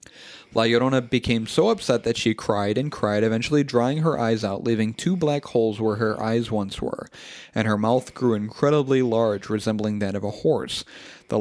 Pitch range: 110-135 Hz